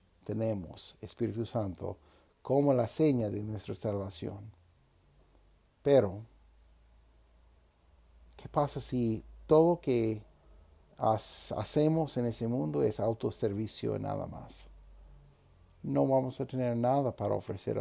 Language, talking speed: Spanish, 110 wpm